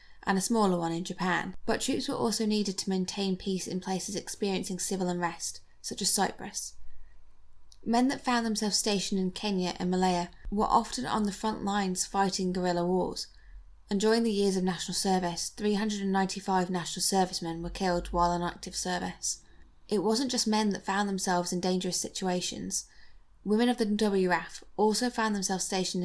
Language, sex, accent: English, female, British